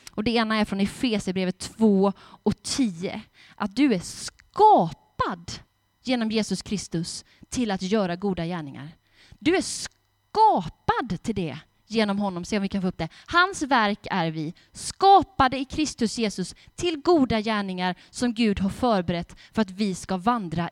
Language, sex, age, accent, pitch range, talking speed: Swedish, female, 20-39, native, 175-260 Hz, 160 wpm